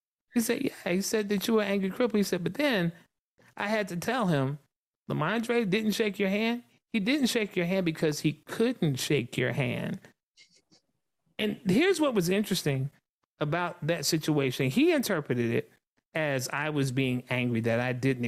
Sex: male